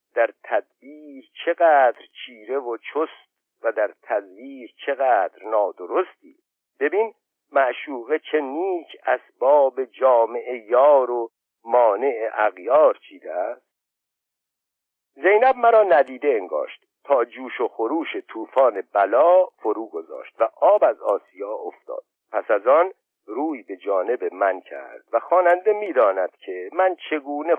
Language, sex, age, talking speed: Persian, male, 60-79, 115 wpm